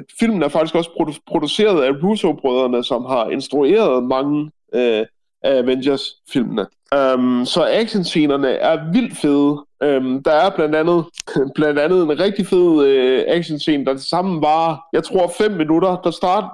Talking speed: 150 wpm